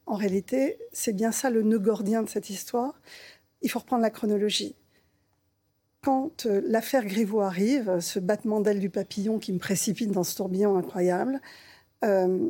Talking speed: 165 wpm